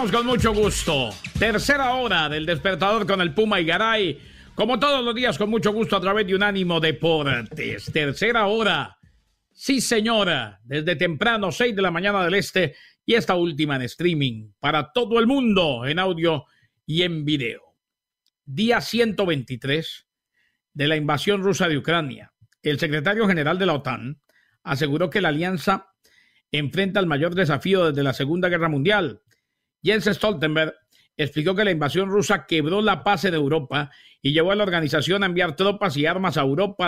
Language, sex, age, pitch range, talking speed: English, male, 50-69, 150-200 Hz, 165 wpm